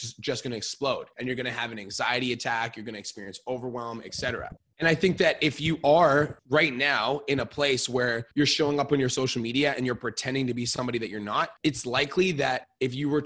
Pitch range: 120-155 Hz